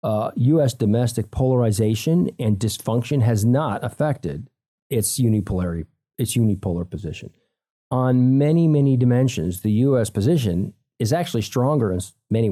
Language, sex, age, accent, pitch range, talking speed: English, male, 40-59, American, 110-140 Hz, 125 wpm